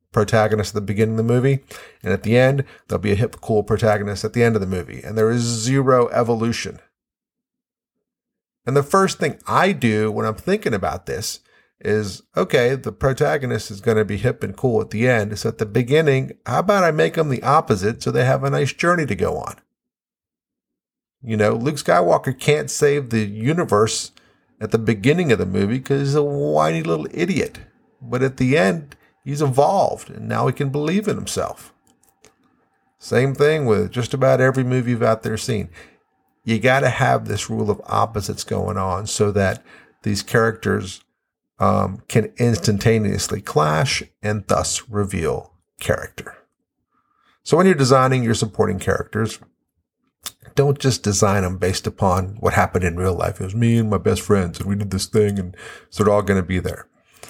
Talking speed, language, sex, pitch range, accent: 185 wpm, English, male, 105-135 Hz, American